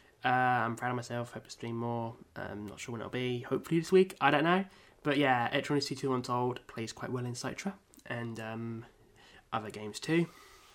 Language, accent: English, British